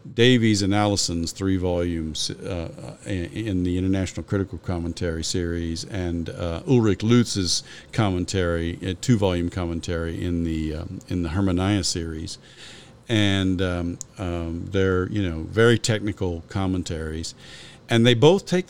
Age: 50-69